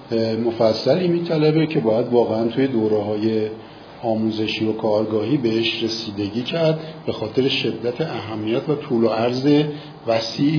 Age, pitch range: 50-69, 115-150 Hz